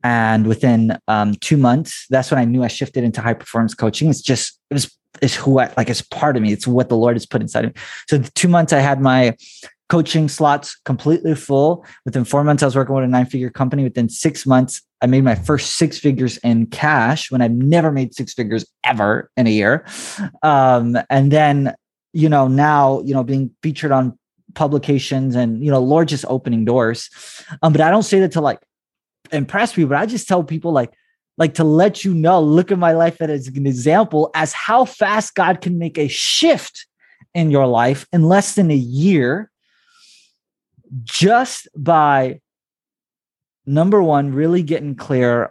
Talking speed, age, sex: 195 wpm, 20-39, male